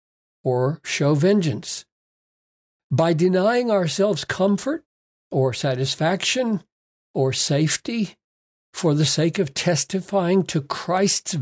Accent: American